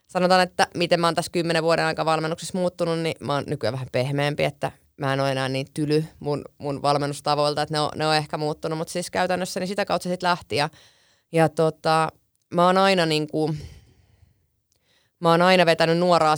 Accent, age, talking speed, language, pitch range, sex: native, 20-39, 195 wpm, Finnish, 150-170 Hz, female